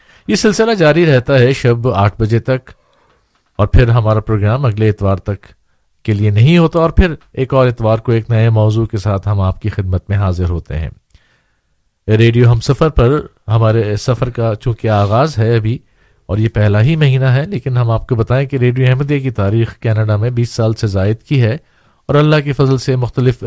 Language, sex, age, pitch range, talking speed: Urdu, male, 50-69, 110-135 Hz, 205 wpm